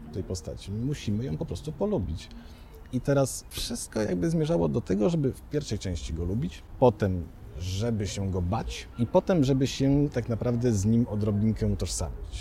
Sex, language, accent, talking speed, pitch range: male, Polish, native, 175 wpm, 95-155 Hz